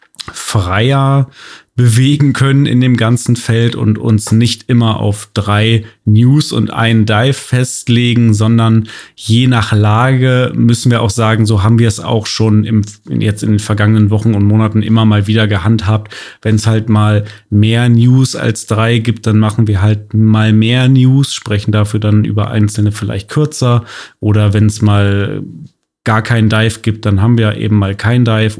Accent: German